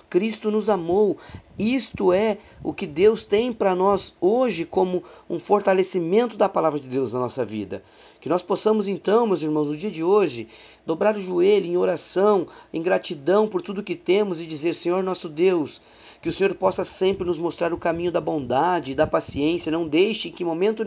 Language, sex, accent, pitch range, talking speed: Portuguese, male, Brazilian, 150-190 Hz, 195 wpm